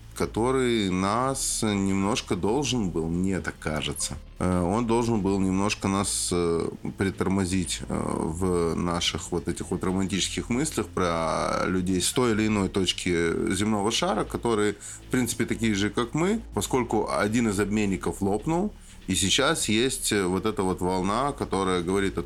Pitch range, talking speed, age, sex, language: 90-115 Hz, 140 wpm, 20-39, male, Russian